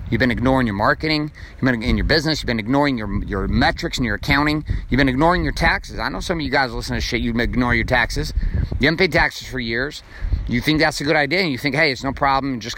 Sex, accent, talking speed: male, American, 280 wpm